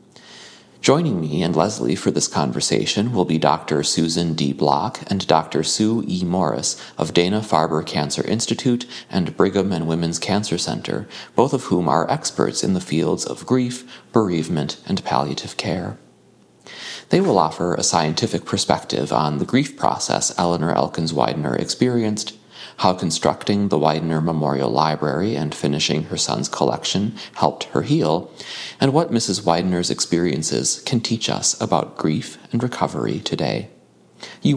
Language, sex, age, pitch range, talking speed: English, male, 30-49, 80-115 Hz, 145 wpm